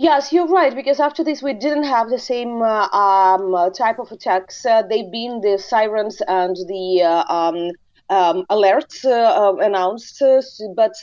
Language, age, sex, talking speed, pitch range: English, 30-49, female, 170 wpm, 190-240 Hz